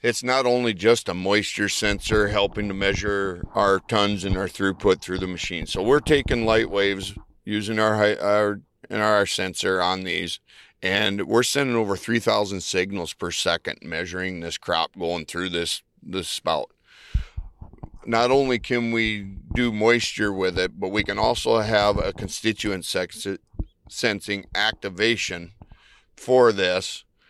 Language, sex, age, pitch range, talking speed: English, male, 50-69, 95-115 Hz, 145 wpm